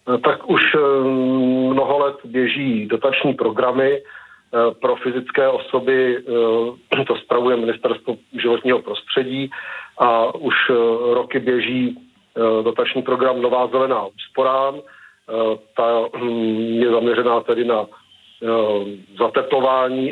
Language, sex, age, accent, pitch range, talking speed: Czech, male, 50-69, native, 115-135 Hz, 90 wpm